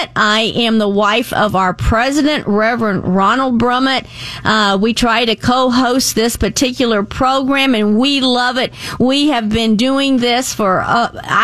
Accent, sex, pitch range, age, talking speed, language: American, female, 205-250 Hz, 50-69, 150 wpm, English